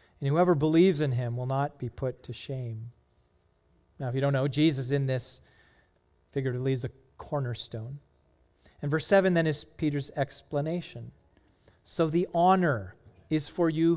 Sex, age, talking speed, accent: male, 40-59, 155 wpm, American